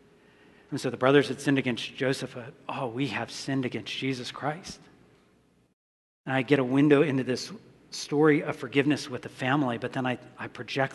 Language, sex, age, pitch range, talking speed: English, male, 40-59, 125-155 Hz, 180 wpm